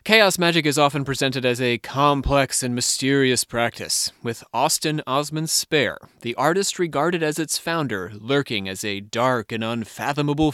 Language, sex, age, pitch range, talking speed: English, male, 30-49, 120-165 Hz, 155 wpm